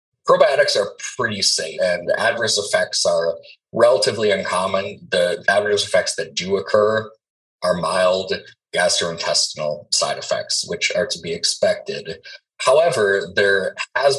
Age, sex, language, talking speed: 30-49, male, English, 125 wpm